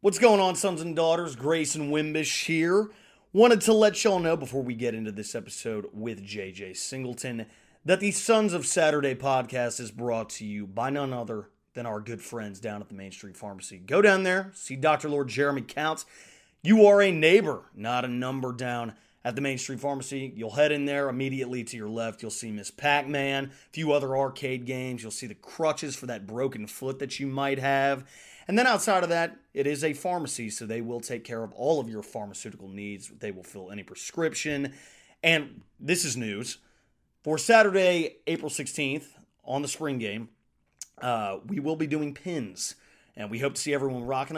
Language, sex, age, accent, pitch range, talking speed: English, male, 30-49, American, 115-155 Hz, 200 wpm